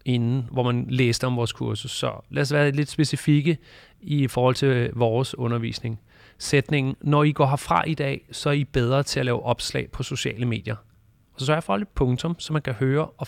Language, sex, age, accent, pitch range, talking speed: Danish, male, 30-49, native, 115-145 Hz, 215 wpm